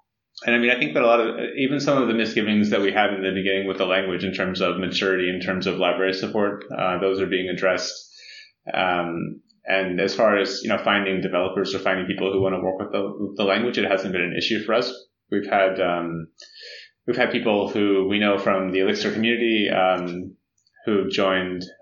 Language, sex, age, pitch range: English, male, 20-39, 95-110 Hz